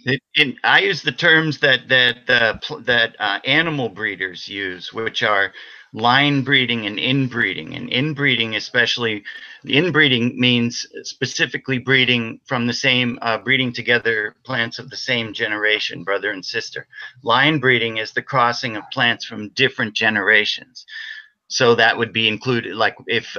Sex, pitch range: male, 115-150 Hz